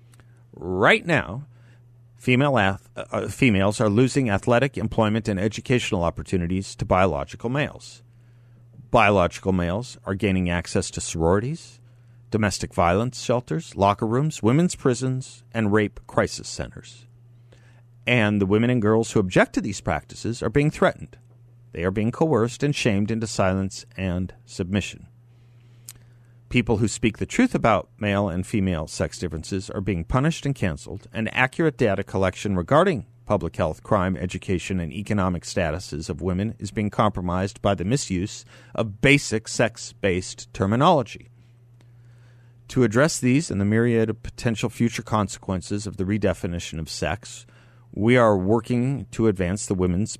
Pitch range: 95-120 Hz